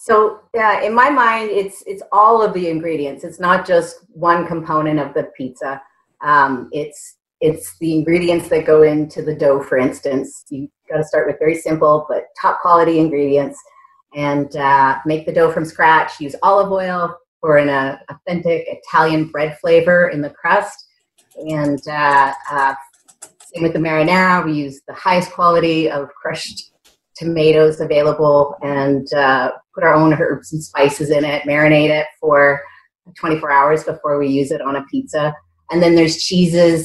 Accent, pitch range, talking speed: American, 150-175 Hz, 170 wpm